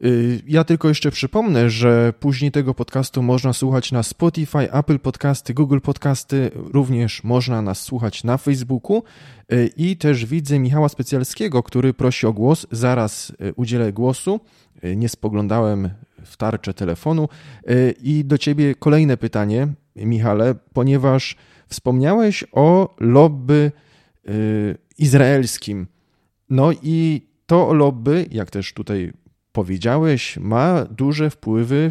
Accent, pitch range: native, 105-140 Hz